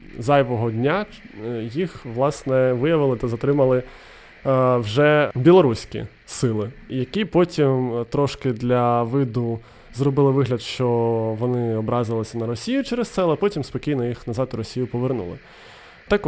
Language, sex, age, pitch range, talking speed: Ukrainian, male, 20-39, 120-150 Hz, 120 wpm